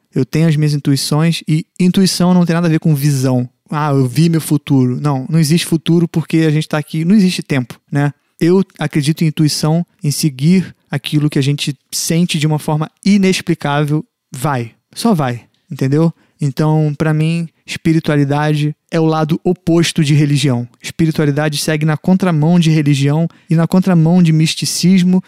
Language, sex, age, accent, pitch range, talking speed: Portuguese, male, 20-39, Brazilian, 145-170 Hz, 170 wpm